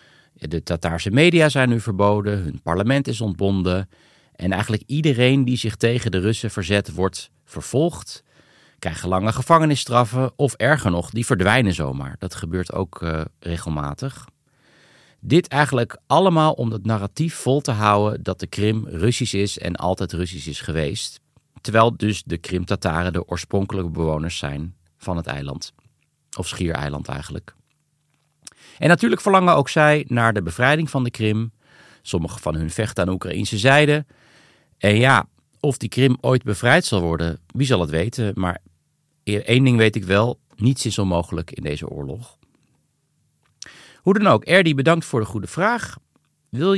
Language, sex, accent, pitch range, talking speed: Dutch, male, Dutch, 90-135 Hz, 155 wpm